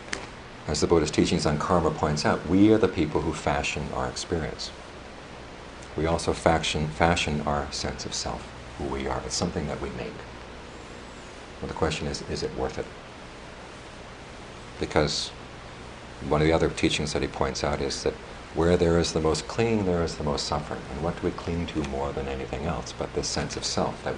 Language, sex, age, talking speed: English, male, 50-69, 195 wpm